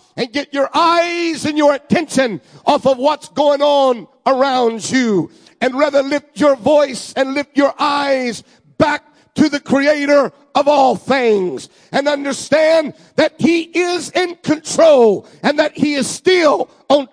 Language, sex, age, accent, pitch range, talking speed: English, male, 50-69, American, 270-315 Hz, 150 wpm